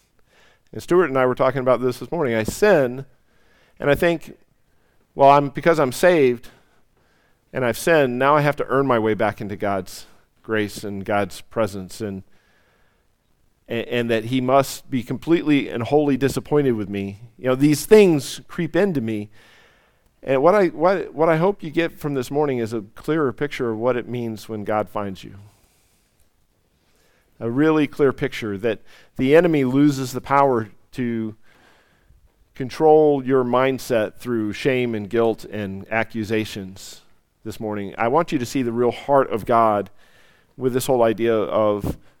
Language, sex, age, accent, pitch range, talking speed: English, male, 50-69, American, 110-150 Hz, 170 wpm